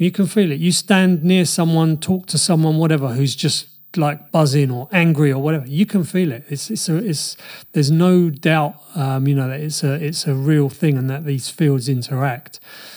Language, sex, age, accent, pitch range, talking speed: English, male, 30-49, British, 135-170 Hz, 215 wpm